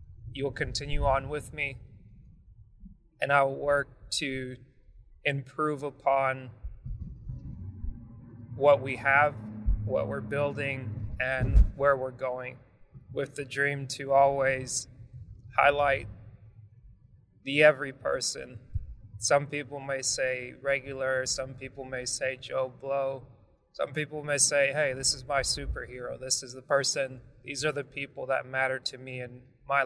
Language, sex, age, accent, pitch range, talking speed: English, male, 20-39, American, 125-140 Hz, 130 wpm